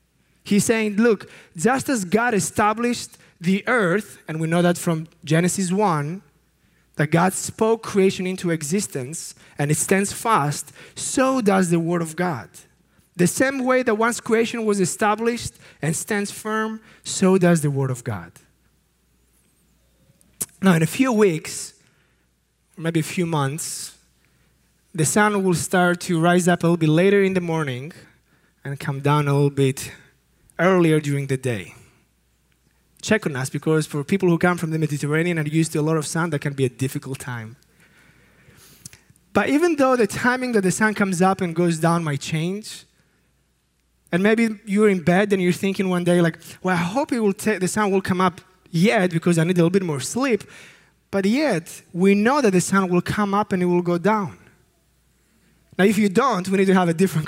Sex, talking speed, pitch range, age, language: male, 185 wpm, 155-200 Hz, 20-39, English